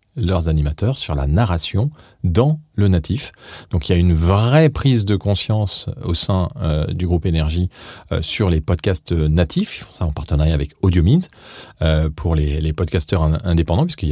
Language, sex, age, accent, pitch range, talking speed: French, male, 40-59, French, 85-110 Hz, 170 wpm